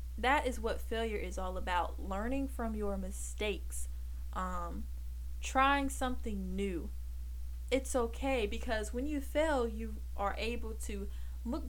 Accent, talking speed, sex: American, 135 wpm, female